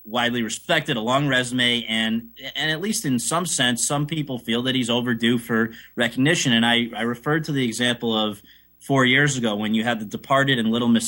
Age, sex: 20-39, male